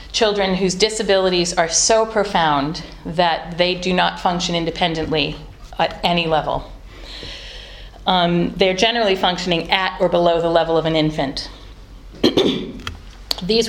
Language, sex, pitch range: English, female, 160-195 Hz